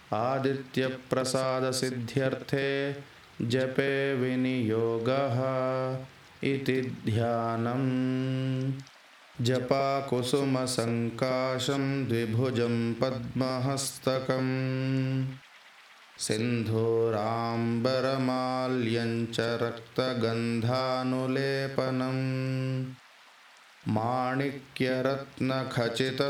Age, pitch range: 20-39, 120-130 Hz